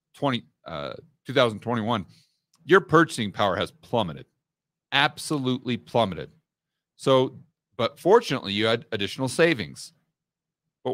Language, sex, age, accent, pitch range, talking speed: English, male, 40-59, American, 105-155 Hz, 100 wpm